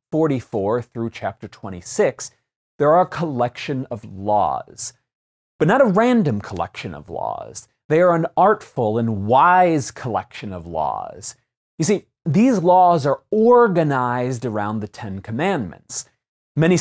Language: English